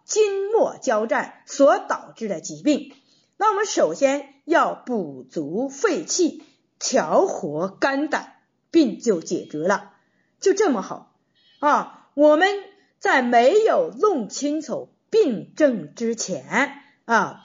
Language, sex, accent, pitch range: Chinese, female, native, 235-370 Hz